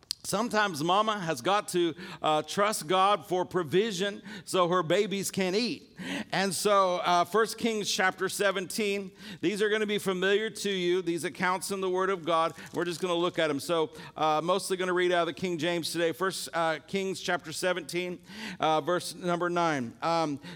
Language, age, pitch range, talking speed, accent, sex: English, 50-69, 170-195 Hz, 195 wpm, American, male